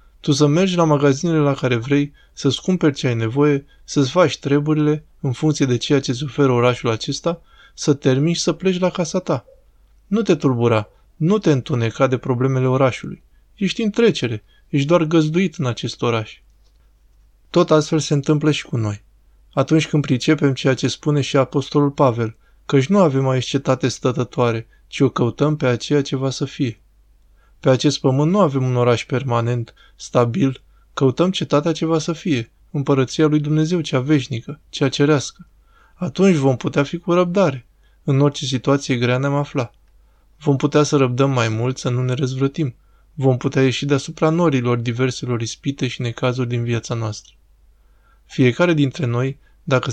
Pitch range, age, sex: 125-155 Hz, 20-39, male